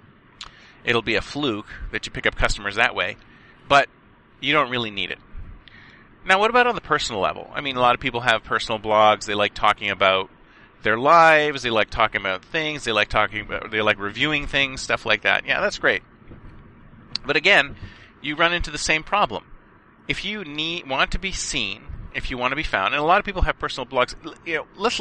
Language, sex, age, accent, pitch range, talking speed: English, male, 30-49, American, 110-145 Hz, 215 wpm